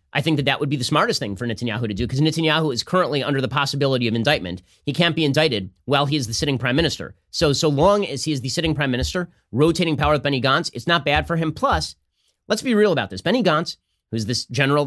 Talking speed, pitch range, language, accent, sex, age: 260 wpm, 120-150 Hz, English, American, male, 30-49